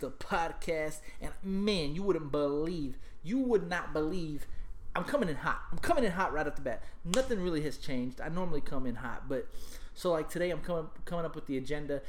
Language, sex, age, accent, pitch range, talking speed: English, male, 30-49, American, 125-180 Hz, 215 wpm